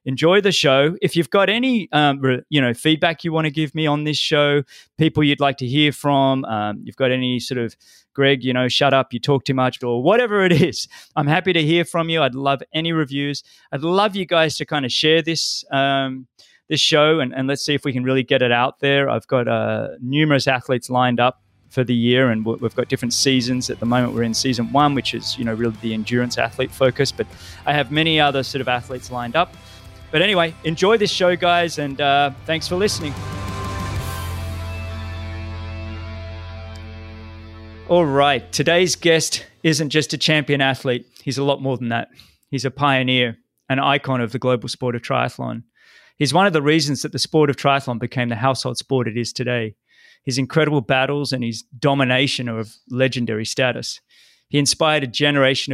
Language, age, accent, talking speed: English, 20-39, Australian, 200 wpm